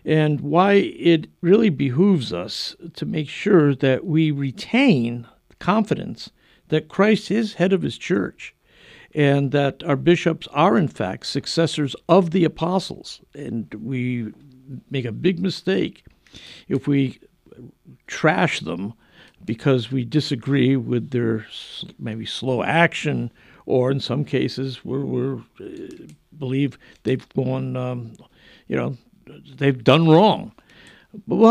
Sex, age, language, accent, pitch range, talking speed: male, 60-79, English, American, 125-170 Hz, 125 wpm